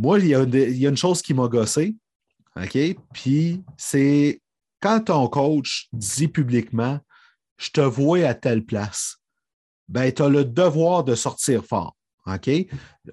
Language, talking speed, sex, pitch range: French, 175 wpm, male, 130-170 Hz